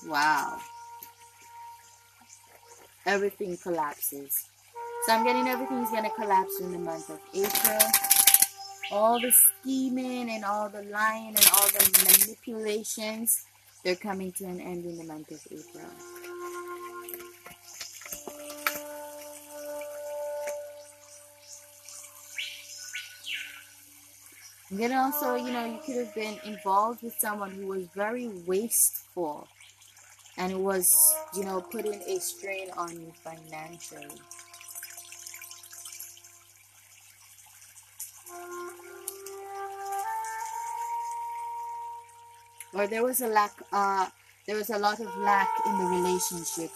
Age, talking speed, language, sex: 20-39, 100 wpm, English, female